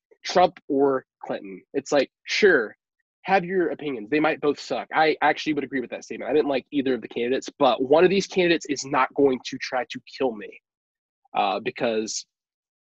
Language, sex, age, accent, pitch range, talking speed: English, male, 20-39, American, 125-195 Hz, 195 wpm